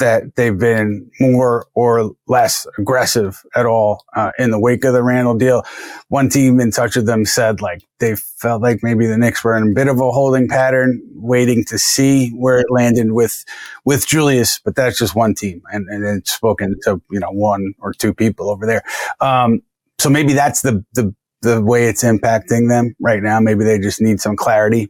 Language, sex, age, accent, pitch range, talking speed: English, male, 30-49, American, 110-125 Hz, 205 wpm